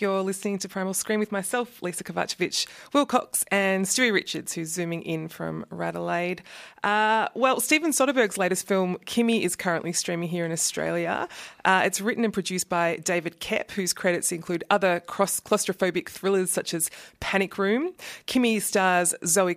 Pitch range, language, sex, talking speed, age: 170-195 Hz, English, female, 160 wpm, 30-49